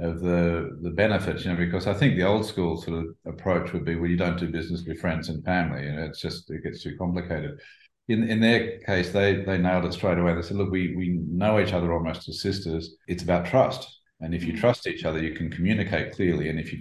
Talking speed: 250 wpm